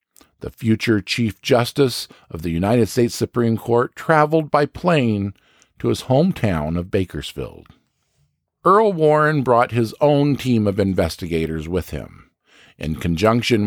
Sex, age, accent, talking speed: male, 50-69, American, 130 wpm